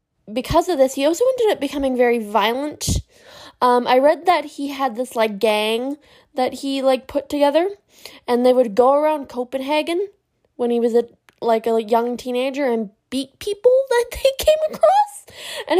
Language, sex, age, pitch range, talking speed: English, female, 10-29, 235-310 Hz, 170 wpm